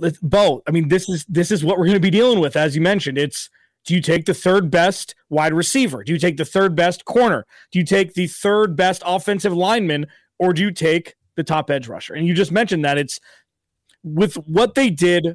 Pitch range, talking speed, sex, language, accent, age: 160-200 Hz, 225 wpm, male, English, American, 30-49